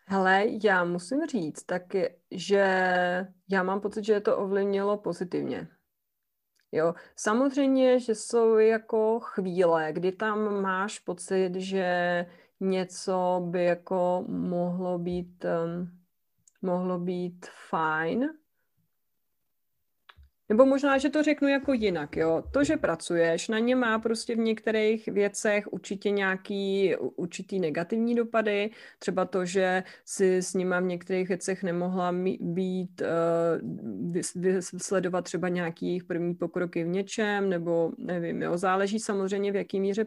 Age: 30-49